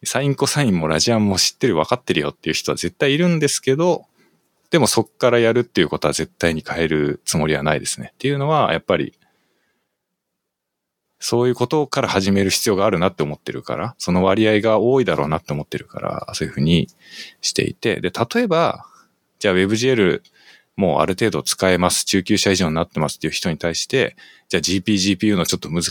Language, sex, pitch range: Japanese, male, 85-140 Hz